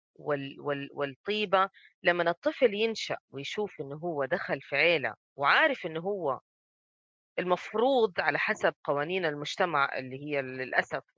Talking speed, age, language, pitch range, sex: 120 wpm, 20-39, Arabic, 150-195 Hz, female